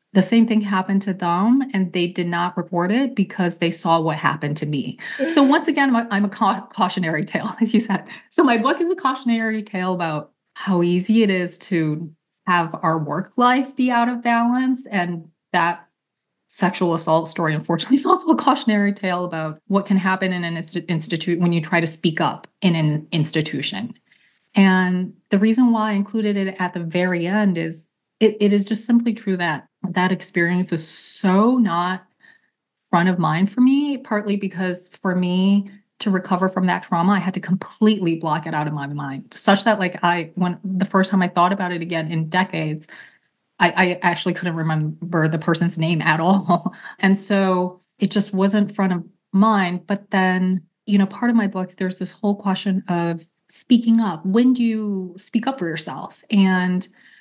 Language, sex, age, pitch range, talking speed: English, female, 30-49, 170-210 Hz, 190 wpm